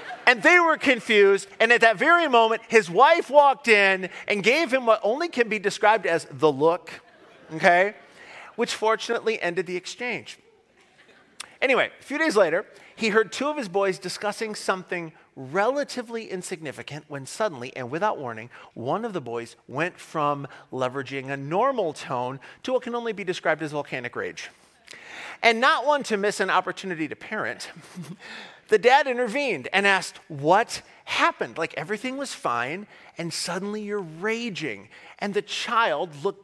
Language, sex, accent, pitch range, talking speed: English, male, American, 170-235 Hz, 160 wpm